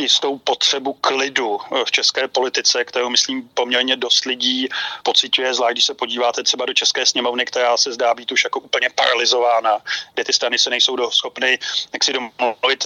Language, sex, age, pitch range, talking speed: Slovak, male, 30-49, 125-145 Hz, 170 wpm